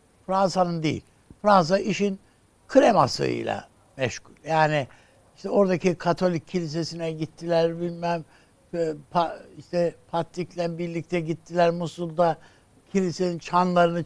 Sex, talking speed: male, 85 wpm